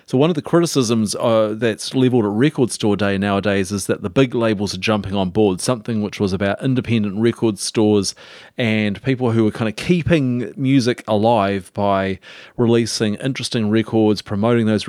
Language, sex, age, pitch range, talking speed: English, male, 40-59, 100-115 Hz, 175 wpm